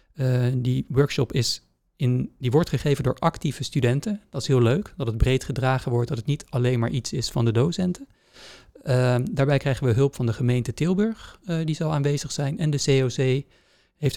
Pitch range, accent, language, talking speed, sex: 125-145 Hz, Dutch, Dutch, 205 wpm, male